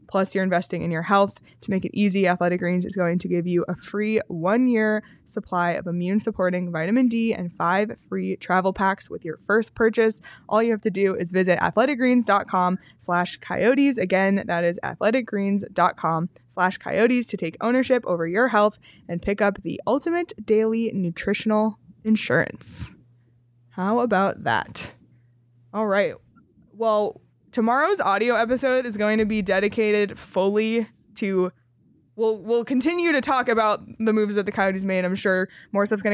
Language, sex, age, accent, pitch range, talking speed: English, female, 20-39, American, 180-220 Hz, 160 wpm